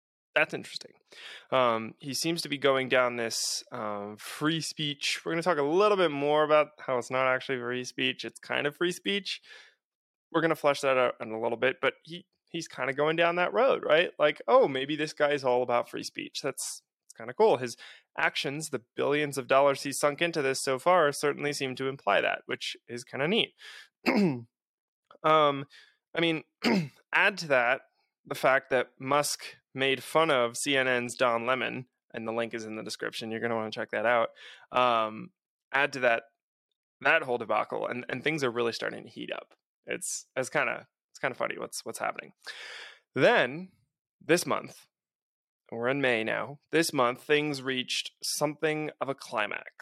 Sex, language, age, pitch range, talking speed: male, English, 20-39, 125-155 Hz, 195 wpm